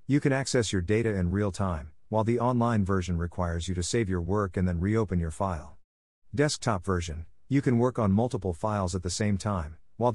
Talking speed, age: 205 wpm, 50-69